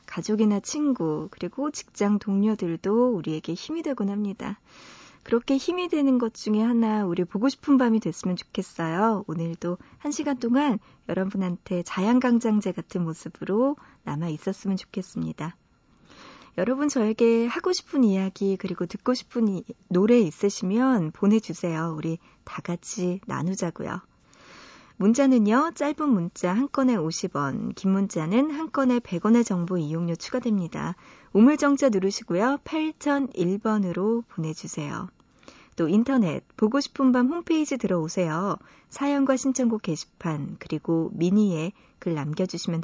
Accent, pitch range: native, 180-255 Hz